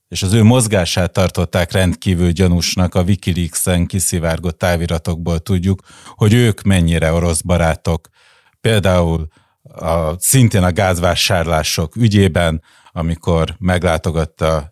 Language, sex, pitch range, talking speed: Hungarian, male, 85-110 Hz, 100 wpm